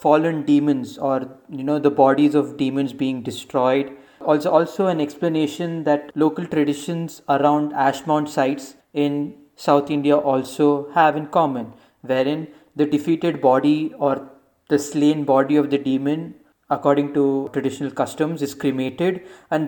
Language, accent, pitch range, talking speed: English, Indian, 140-155 Hz, 145 wpm